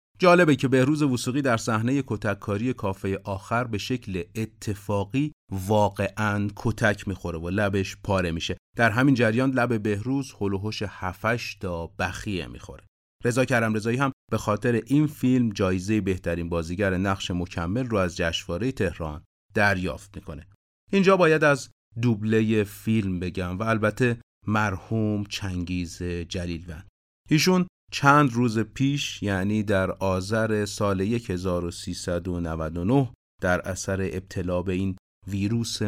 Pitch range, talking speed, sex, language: 90-115 Hz, 120 wpm, male, Persian